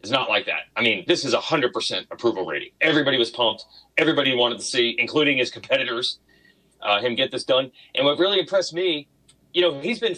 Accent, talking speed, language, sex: American, 210 wpm, English, male